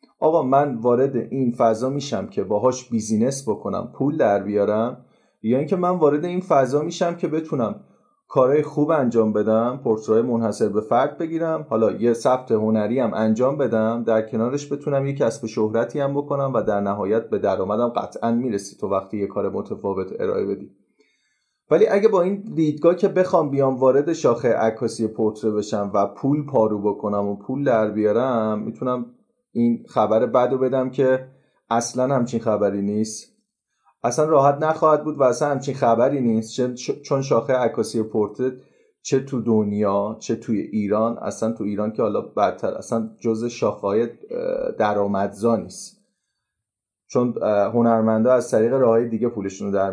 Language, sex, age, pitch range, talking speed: Persian, male, 30-49, 110-145 Hz, 155 wpm